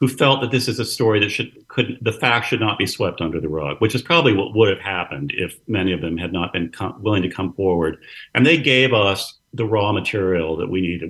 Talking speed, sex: 260 wpm, male